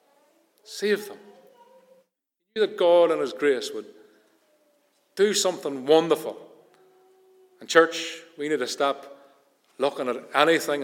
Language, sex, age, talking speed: English, male, 40-59, 115 wpm